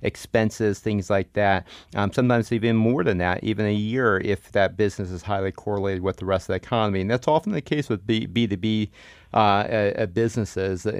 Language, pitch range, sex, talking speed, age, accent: English, 100-120 Hz, male, 195 wpm, 30-49, American